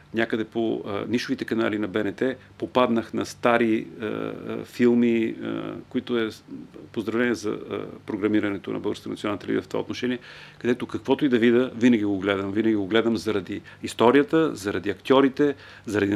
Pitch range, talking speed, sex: 110-145 Hz, 155 wpm, male